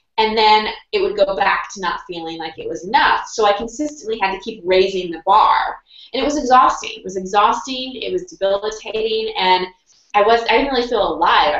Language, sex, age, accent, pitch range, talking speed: English, female, 20-39, American, 165-215 Hz, 200 wpm